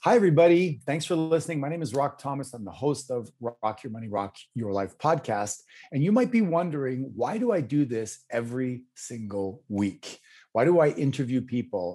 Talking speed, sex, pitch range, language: 195 wpm, male, 105-145 Hz, English